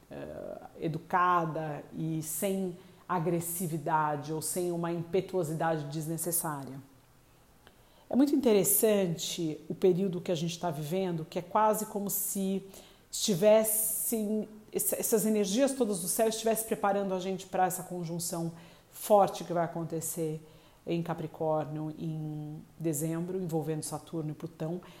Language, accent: Portuguese, Brazilian